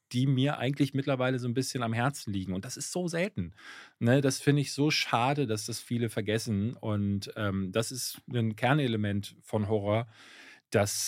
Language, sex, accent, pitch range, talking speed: German, male, German, 115-140 Hz, 185 wpm